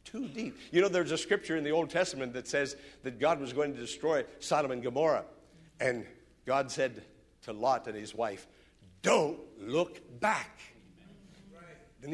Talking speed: 170 wpm